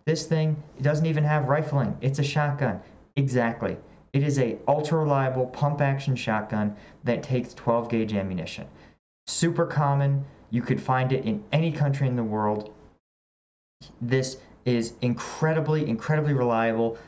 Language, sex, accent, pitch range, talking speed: English, male, American, 115-150 Hz, 140 wpm